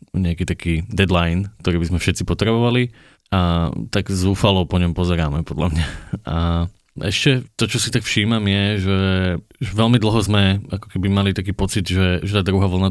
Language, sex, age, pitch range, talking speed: Slovak, male, 20-39, 85-95 Hz, 175 wpm